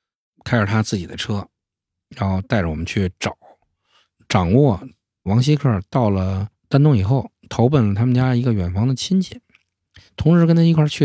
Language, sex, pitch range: Chinese, male, 95-130 Hz